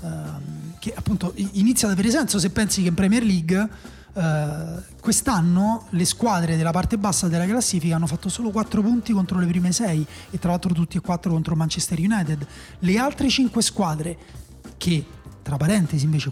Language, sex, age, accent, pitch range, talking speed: Italian, male, 30-49, native, 160-205 Hz, 175 wpm